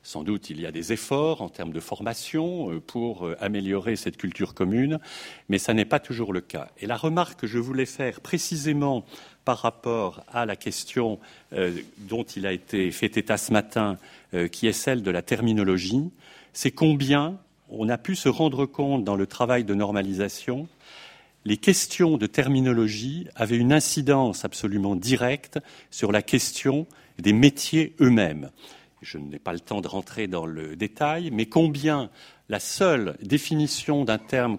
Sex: male